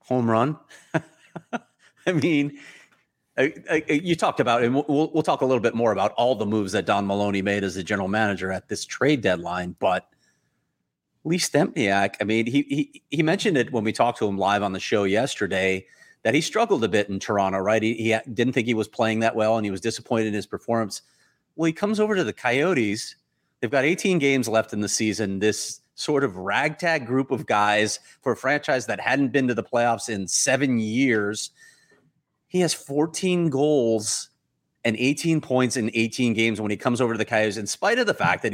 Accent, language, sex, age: American, English, male, 30-49